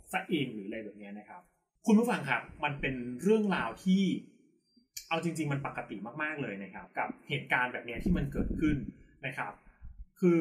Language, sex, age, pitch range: Thai, male, 20-39, 125-180 Hz